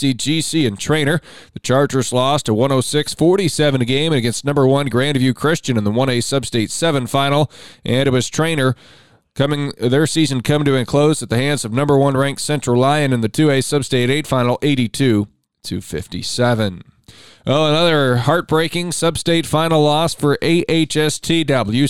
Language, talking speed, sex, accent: English, 150 wpm, male, American